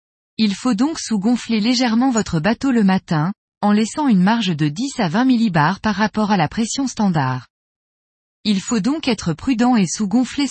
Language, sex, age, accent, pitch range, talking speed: French, female, 20-39, French, 185-245 Hz, 175 wpm